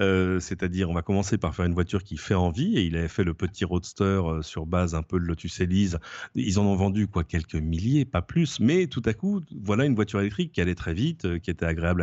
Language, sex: French, male